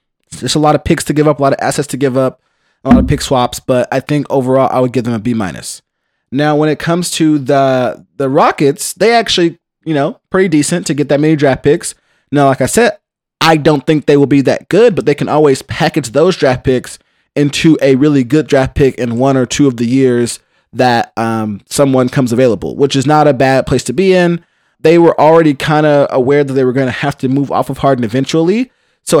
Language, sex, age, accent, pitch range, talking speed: English, male, 20-39, American, 130-155 Hz, 240 wpm